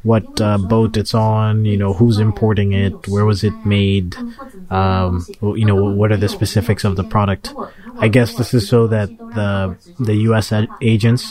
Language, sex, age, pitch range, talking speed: English, male, 20-39, 100-115 Hz, 180 wpm